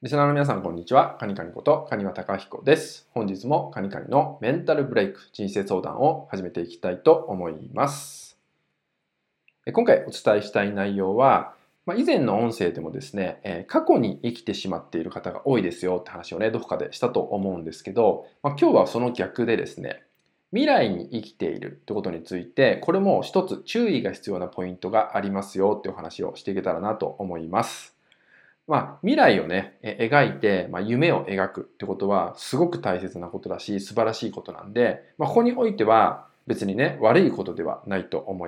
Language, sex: Japanese, male